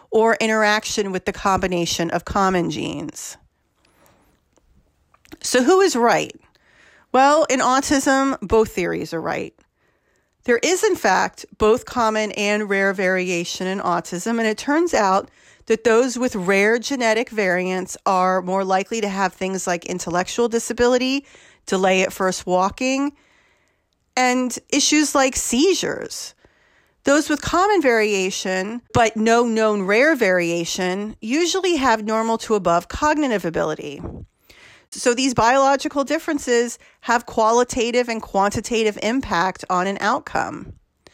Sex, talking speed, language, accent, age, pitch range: female, 125 wpm, English, American, 40-59, 195-260 Hz